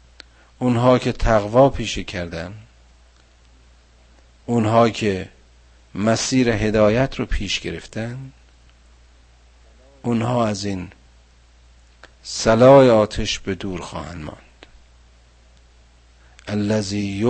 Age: 50-69